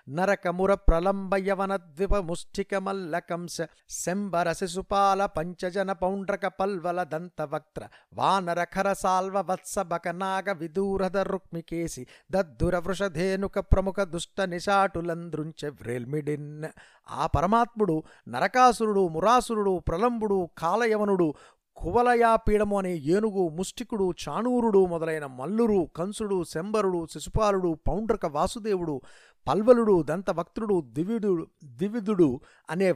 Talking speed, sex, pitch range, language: 50 wpm, male, 160-200 Hz, Telugu